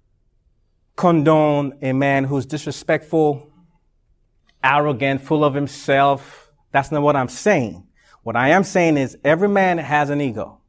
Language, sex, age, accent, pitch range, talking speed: English, male, 30-49, American, 130-170 Hz, 135 wpm